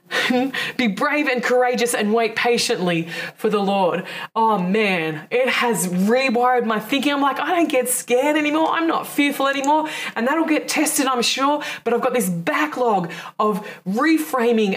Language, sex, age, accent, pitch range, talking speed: English, female, 20-39, Australian, 210-275 Hz, 165 wpm